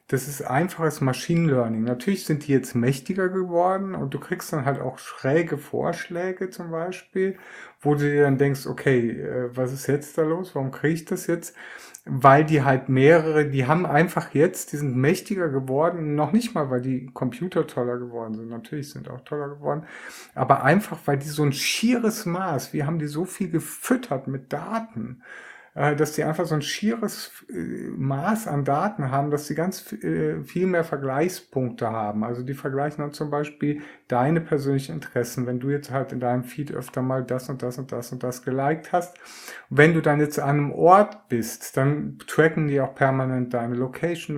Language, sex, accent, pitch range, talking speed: German, male, German, 130-165 Hz, 190 wpm